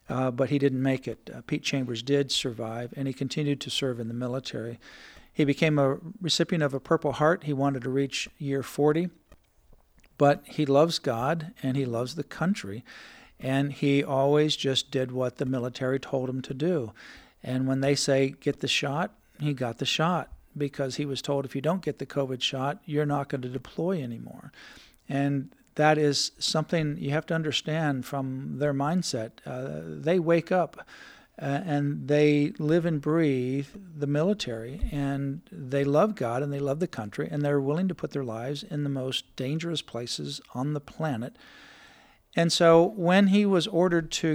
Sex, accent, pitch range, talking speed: male, American, 135-160 Hz, 185 wpm